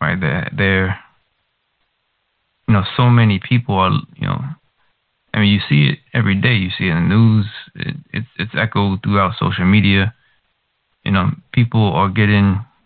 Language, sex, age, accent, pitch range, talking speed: English, male, 20-39, American, 100-140 Hz, 170 wpm